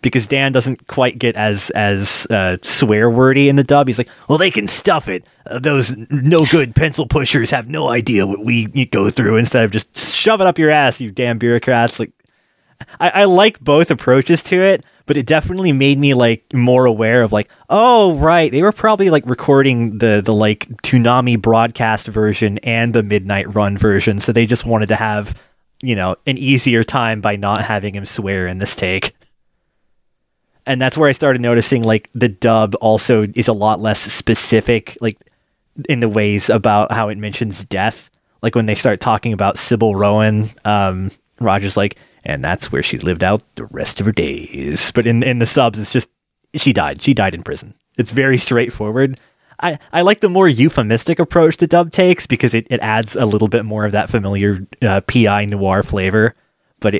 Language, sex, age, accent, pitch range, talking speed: English, male, 20-39, American, 105-135 Hz, 195 wpm